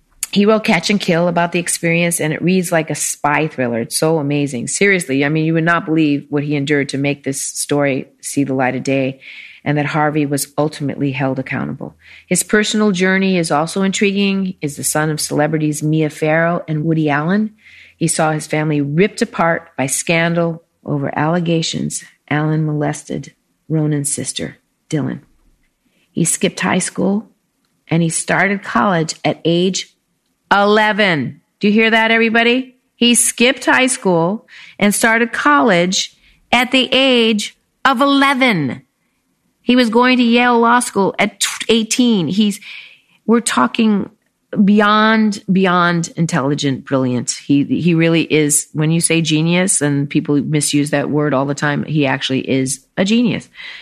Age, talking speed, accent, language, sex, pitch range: 40-59, 155 wpm, American, English, female, 145-210 Hz